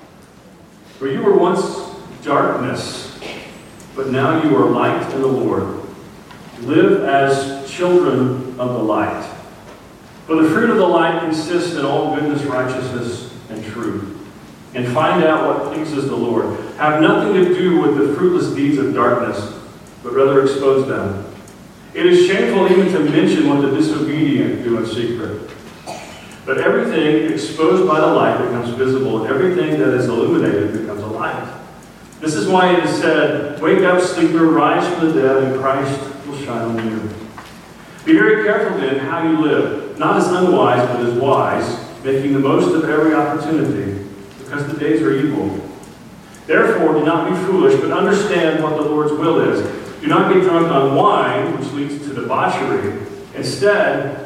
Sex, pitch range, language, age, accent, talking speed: male, 135-180 Hz, English, 40-59, American, 165 wpm